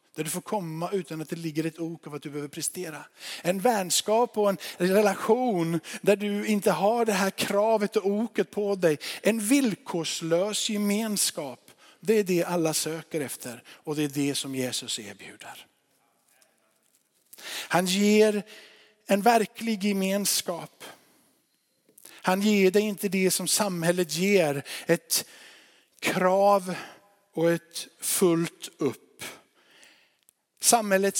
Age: 50-69